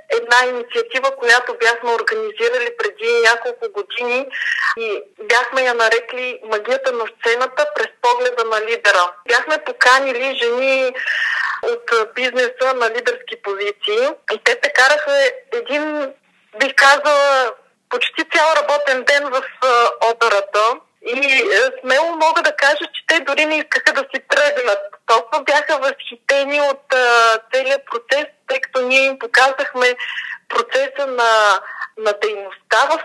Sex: female